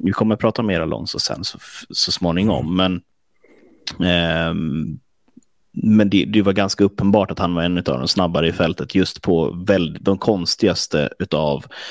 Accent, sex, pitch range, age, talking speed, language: native, male, 85-105 Hz, 30-49, 170 wpm, Swedish